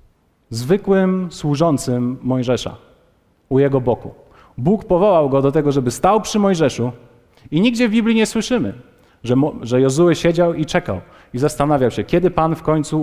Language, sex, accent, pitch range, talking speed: Polish, male, native, 135-190 Hz, 155 wpm